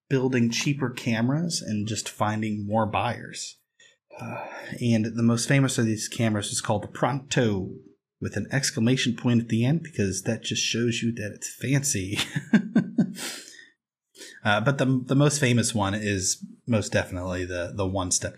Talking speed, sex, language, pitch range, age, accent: 155 wpm, male, English, 105-145 Hz, 30-49, American